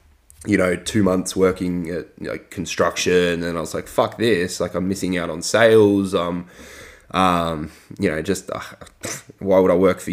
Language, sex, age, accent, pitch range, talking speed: English, male, 20-39, Australian, 90-115 Hz, 190 wpm